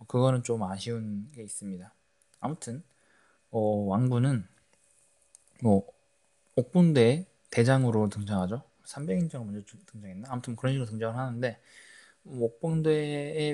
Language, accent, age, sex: Korean, native, 20-39, male